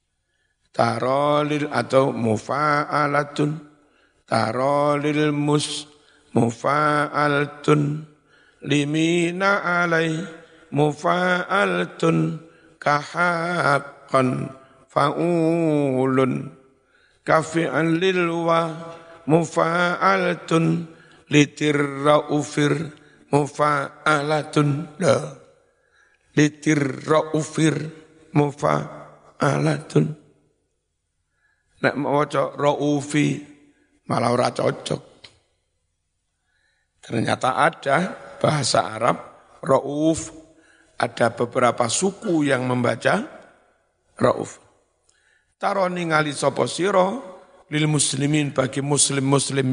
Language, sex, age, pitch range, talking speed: Indonesian, male, 60-79, 130-160 Hz, 50 wpm